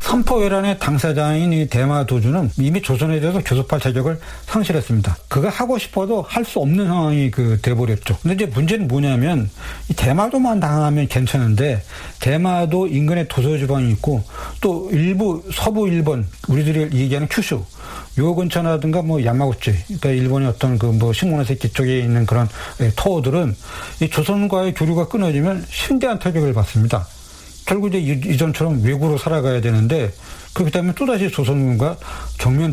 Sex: male